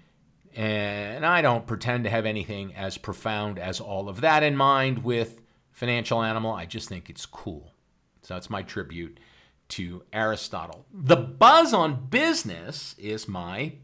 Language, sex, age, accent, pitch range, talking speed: English, male, 50-69, American, 100-135 Hz, 150 wpm